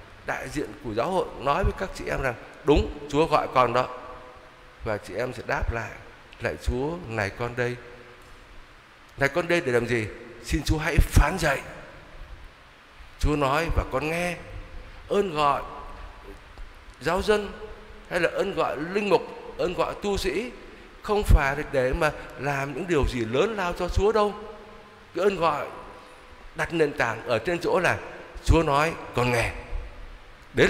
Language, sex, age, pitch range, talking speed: Vietnamese, male, 60-79, 110-175 Hz, 165 wpm